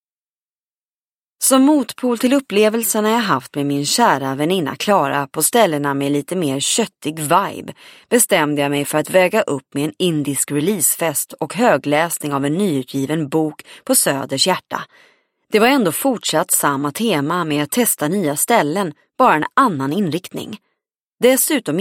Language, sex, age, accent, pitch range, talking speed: English, female, 30-49, Swedish, 145-215 Hz, 150 wpm